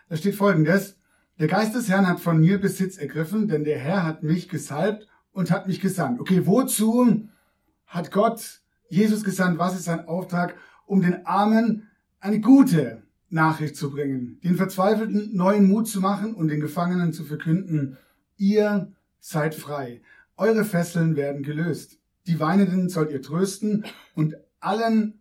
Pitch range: 155-195 Hz